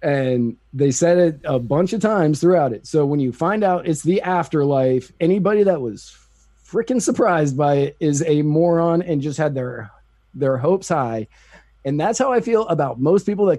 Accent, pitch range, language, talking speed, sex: American, 145-190 Hz, English, 195 wpm, male